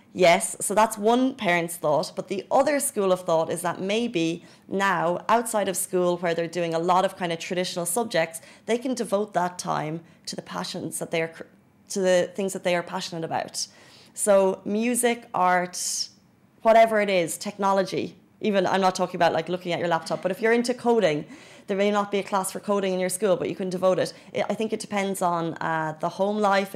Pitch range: 165-200 Hz